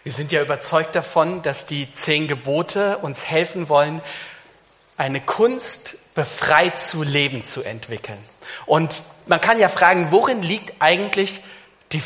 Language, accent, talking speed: German, German, 140 wpm